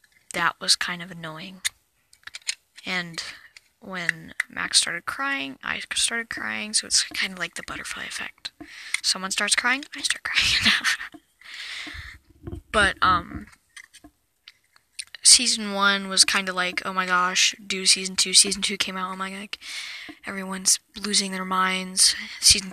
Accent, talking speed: American, 140 wpm